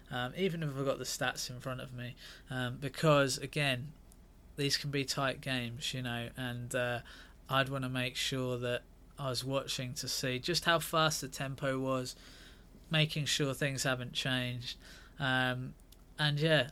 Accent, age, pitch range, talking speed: British, 20-39, 125-140 Hz, 170 wpm